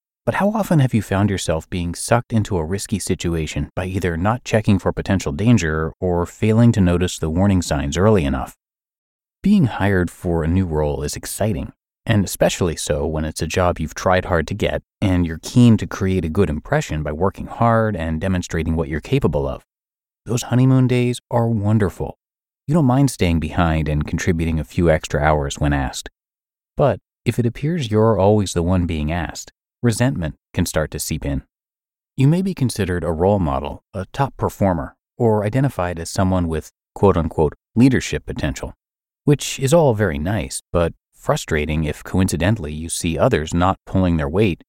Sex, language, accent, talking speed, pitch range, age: male, English, American, 180 wpm, 80-115 Hz, 30-49